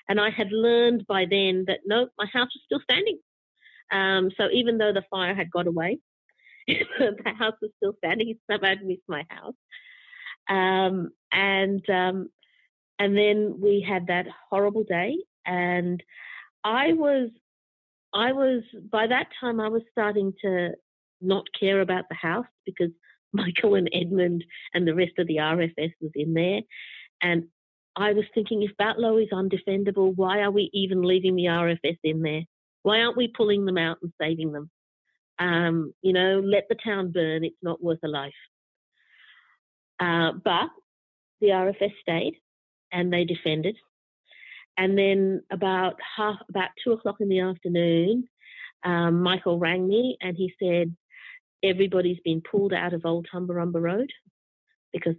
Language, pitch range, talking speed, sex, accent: English, 175-210 Hz, 155 wpm, female, Australian